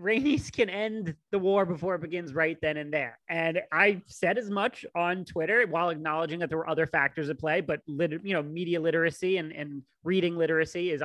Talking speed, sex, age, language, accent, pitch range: 210 wpm, male, 30-49, English, American, 160-210 Hz